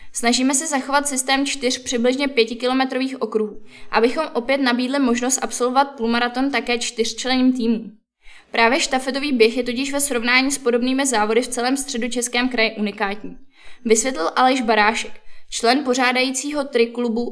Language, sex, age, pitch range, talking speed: Czech, female, 10-29, 225-265 Hz, 140 wpm